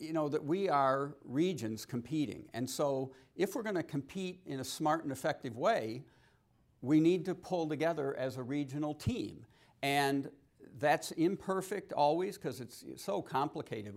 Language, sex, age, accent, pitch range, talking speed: English, male, 60-79, American, 115-155 Hz, 165 wpm